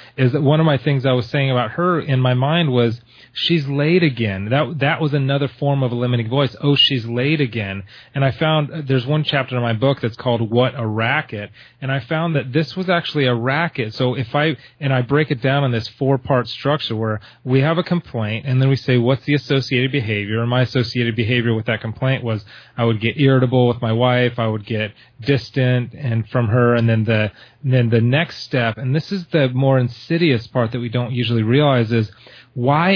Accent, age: American, 30-49